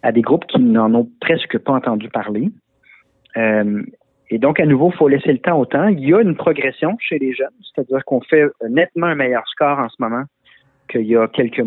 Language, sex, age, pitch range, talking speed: French, male, 40-59, 115-155 Hz, 220 wpm